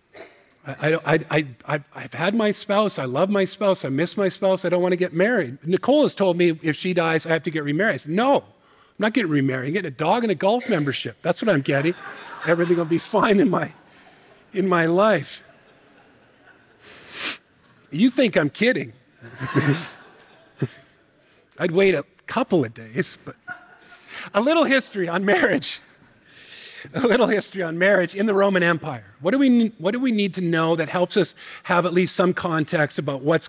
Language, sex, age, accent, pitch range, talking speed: English, male, 50-69, American, 160-200 Hz, 190 wpm